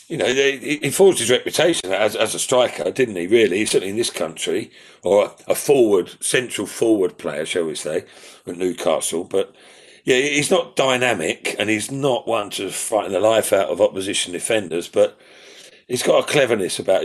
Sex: male